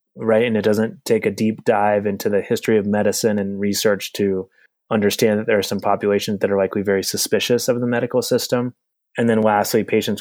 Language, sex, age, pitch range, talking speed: English, male, 20-39, 100-120 Hz, 205 wpm